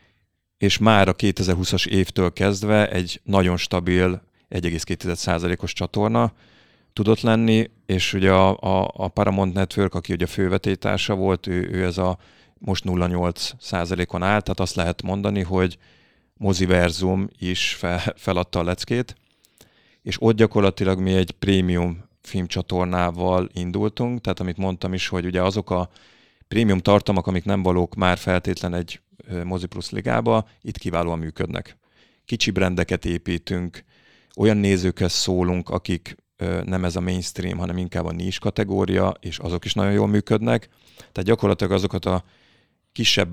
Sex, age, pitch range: male, 30-49, 90-100 Hz